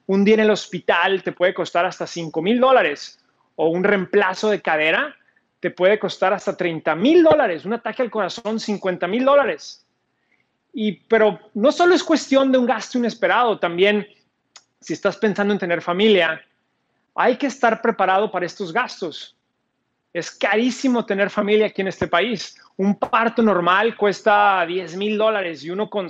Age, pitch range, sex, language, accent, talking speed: 30-49, 175-215 Hz, male, Spanish, Mexican, 170 wpm